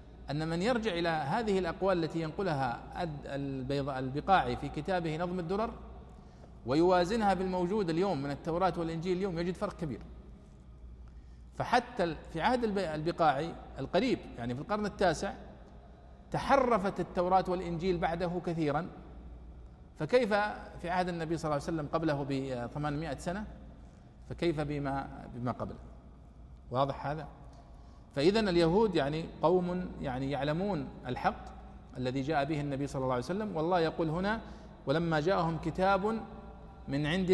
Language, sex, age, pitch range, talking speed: Arabic, male, 40-59, 125-185 Hz, 120 wpm